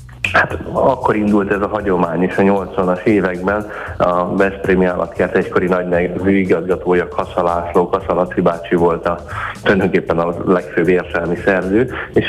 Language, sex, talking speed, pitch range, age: Hungarian, male, 130 wpm, 85-100 Hz, 20-39